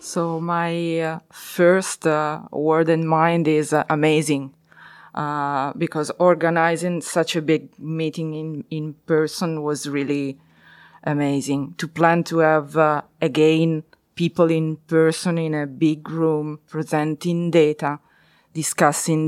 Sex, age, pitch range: female, 20-39, 150-170 Hz